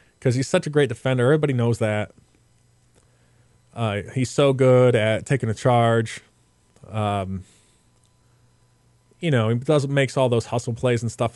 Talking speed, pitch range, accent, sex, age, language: 155 wpm, 110-135 Hz, American, male, 20-39, English